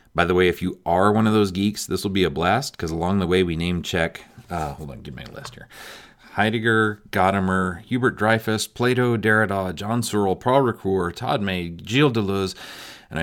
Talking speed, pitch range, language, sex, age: 205 wpm, 90-115 Hz, English, male, 40-59